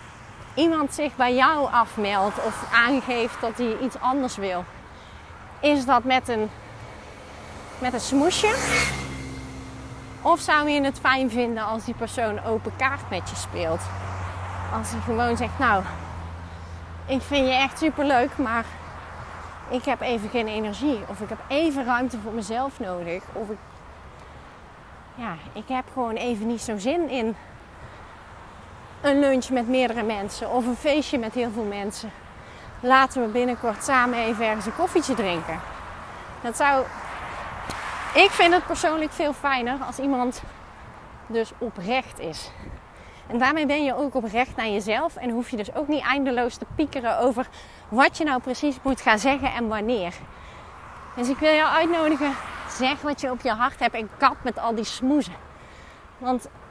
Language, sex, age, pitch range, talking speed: Dutch, female, 30-49, 220-275 Hz, 160 wpm